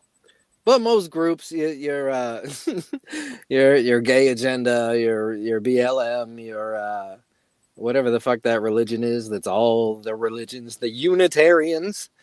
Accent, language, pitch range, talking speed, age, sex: American, English, 115-160 Hz, 135 wpm, 30-49, male